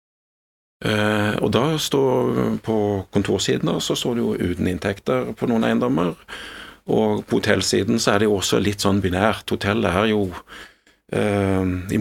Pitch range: 95-110 Hz